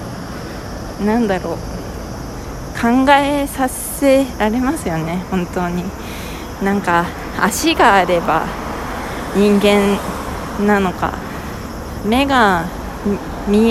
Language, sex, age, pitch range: Japanese, female, 20-39, 170-210 Hz